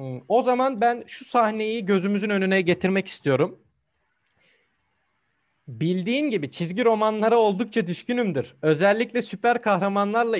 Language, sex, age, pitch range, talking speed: Turkish, male, 40-59, 175-225 Hz, 105 wpm